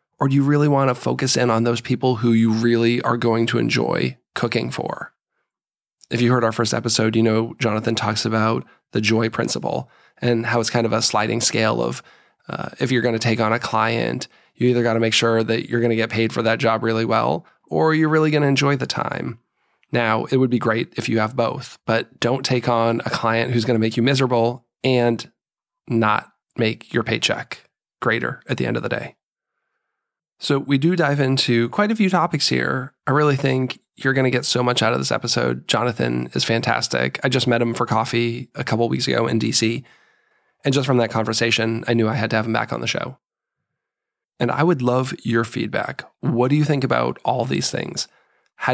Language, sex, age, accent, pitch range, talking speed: English, male, 20-39, American, 115-130 Hz, 220 wpm